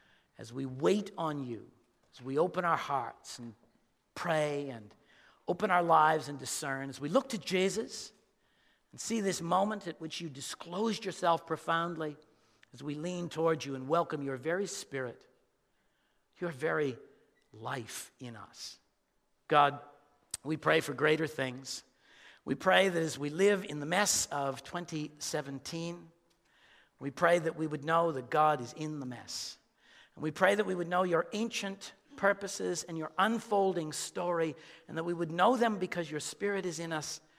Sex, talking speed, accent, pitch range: male, 165 wpm, American, 135-175 Hz